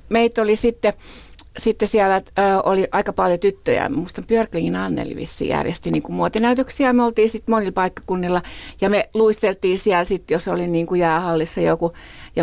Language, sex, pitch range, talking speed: Finnish, female, 170-225 Hz, 165 wpm